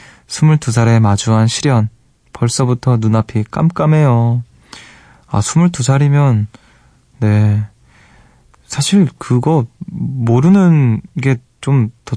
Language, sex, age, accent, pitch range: Korean, male, 20-39, native, 110-130 Hz